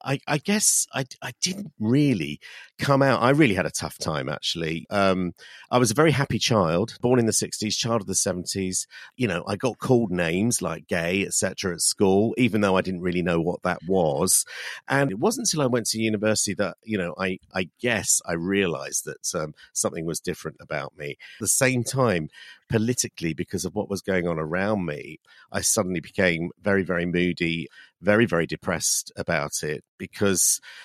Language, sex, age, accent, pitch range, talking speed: English, male, 50-69, British, 90-115 Hz, 195 wpm